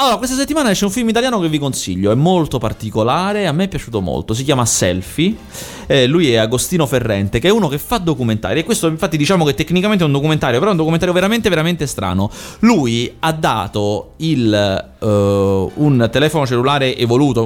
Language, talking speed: Italian, 195 wpm